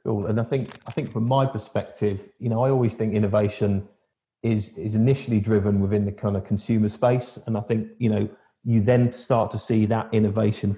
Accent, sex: British, male